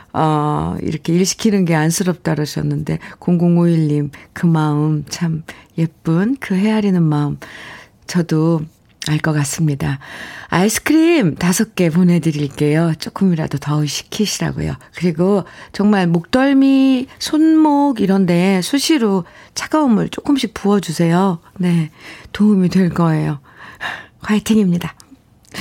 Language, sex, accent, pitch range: Korean, female, native, 155-210 Hz